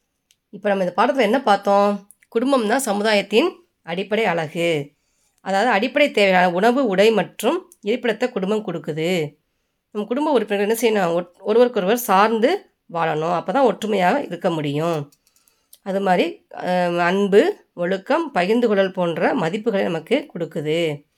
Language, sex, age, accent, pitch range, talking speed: Tamil, female, 20-39, native, 170-230 Hz, 115 wpm